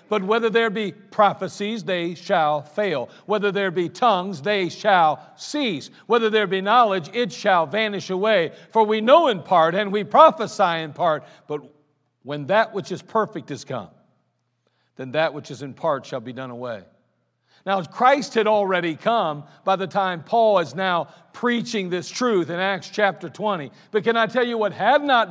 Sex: male